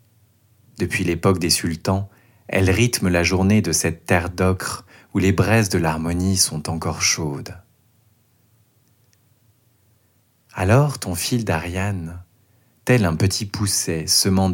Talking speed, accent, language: 120 wpm, French, French